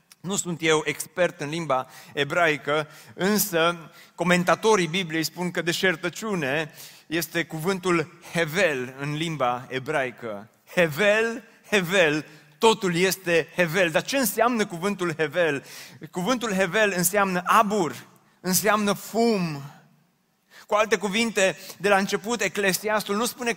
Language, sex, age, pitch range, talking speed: Romanian, male, 30-49, 160-205 Hz, 110 wpm